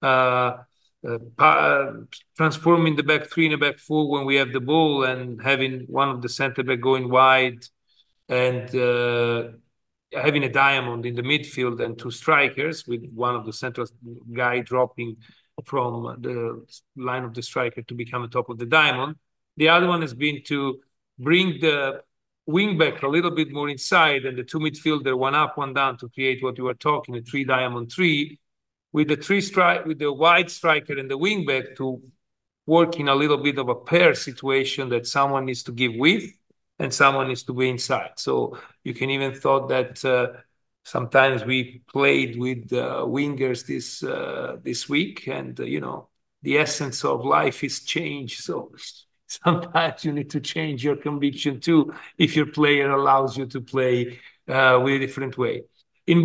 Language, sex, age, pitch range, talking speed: English, male, 40-59, 125-150 Hz, 180 wpm